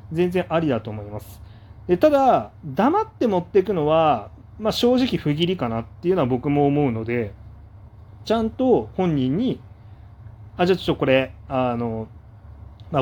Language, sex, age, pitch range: Japanese, male, 30-49, 110-165 Hz